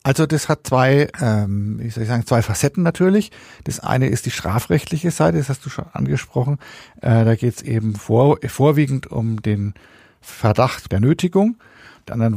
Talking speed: 175 wpm